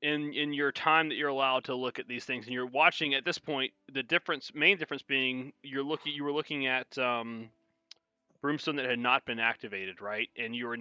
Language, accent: English, American